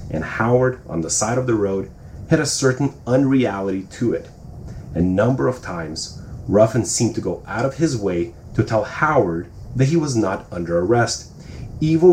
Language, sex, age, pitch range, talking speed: English, male, 30-49, 95-130 Hz, 180 wpm